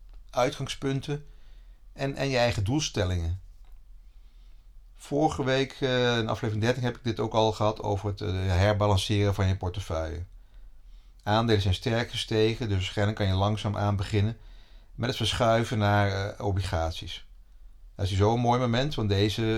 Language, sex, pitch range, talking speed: Dutch, male, 95-115 Hz, 145 wpm